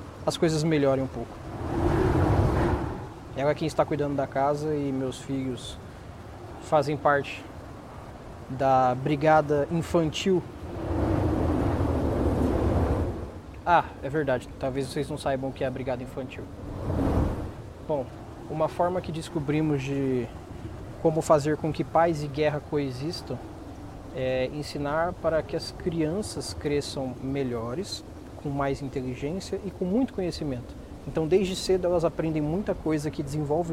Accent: Brazilian